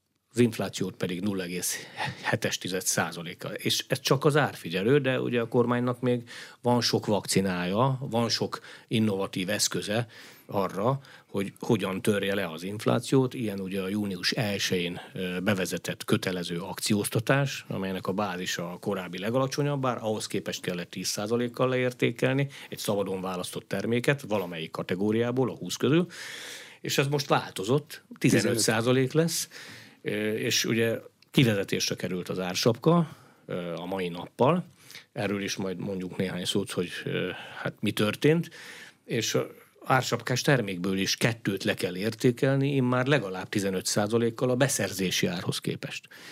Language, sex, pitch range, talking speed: Hungarian, male, 95-130 Hz, 125 wpm